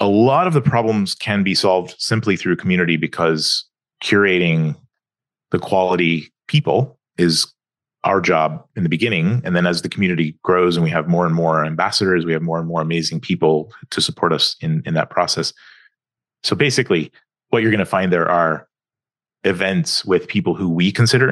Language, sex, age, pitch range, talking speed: English, male, 30-49, 85-120 Hz, 180 wpm